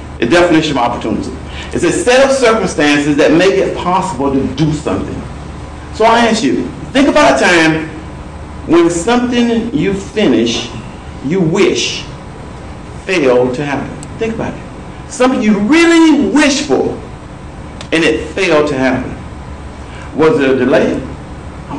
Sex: male